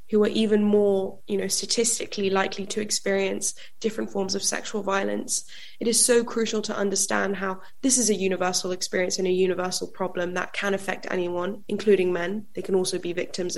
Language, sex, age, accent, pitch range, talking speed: English, female, 10-29, British, 190-215 Hz, 175 wpm